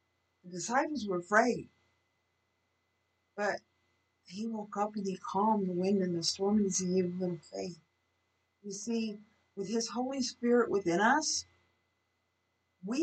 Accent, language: American, English